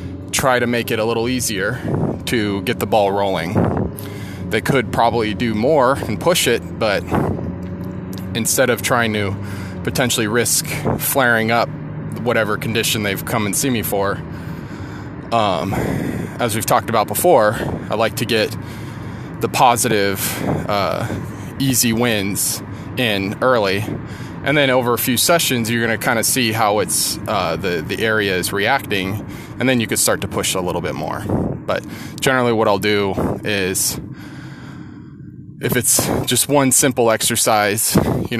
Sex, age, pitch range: male, 20-39, 100-125 Hz